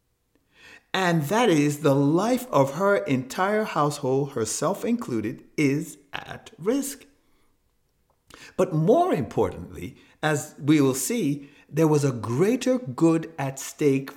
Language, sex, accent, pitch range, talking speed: English, male, American, 135-220 Hz, 120 wpm